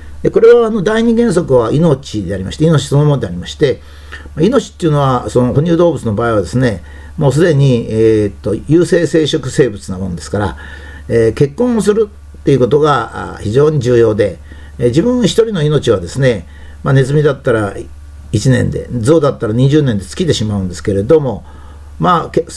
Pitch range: 100-160 Hz